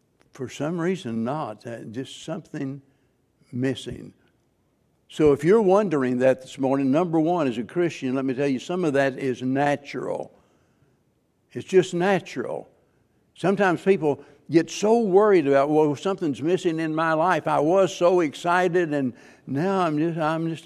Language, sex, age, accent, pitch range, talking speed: English, male, 60-79, American, 130-165 Hz, 155 wpm